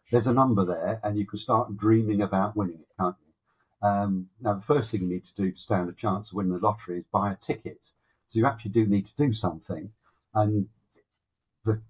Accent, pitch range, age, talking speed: British, 95-115 Hz, 50-69, 225 wpm